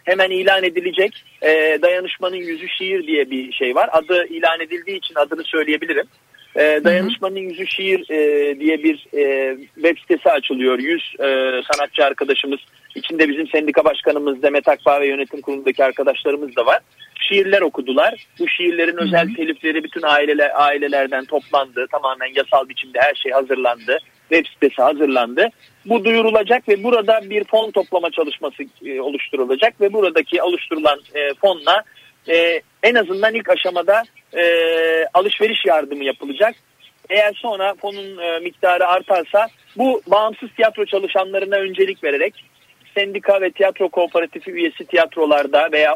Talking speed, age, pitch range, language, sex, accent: 130 wpm, 40-59, 150-205 Hz, Turkish, male, native